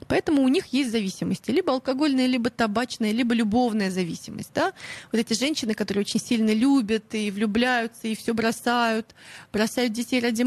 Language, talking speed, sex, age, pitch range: Russian, 160 wpm, female, 20-39, 215-260 Hz